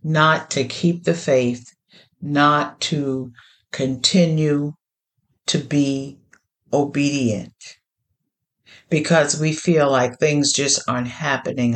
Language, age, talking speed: English, 50-69, 95 wpm